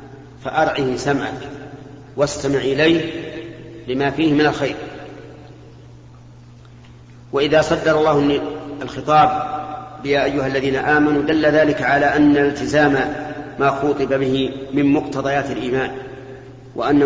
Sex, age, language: male, 40-59, Arabic